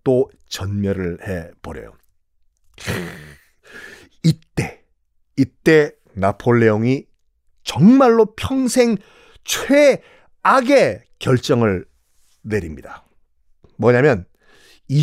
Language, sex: Korean, male